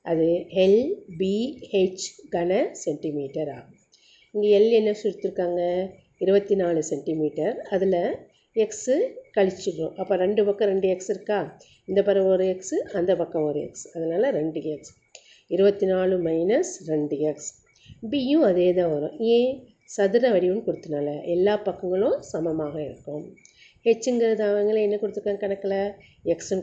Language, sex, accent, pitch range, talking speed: Tamil, female, native, 160-200 Hz, 125 wpm